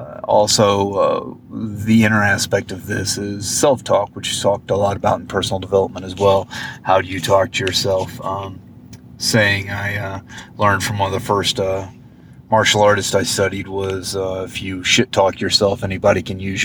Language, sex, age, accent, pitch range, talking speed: English, male, 30-49, American, 100-115 Hz, 185 wpm